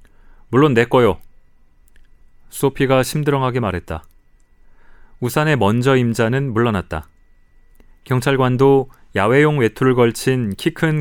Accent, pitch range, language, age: native, 100-135 Hz, Korean, 30-49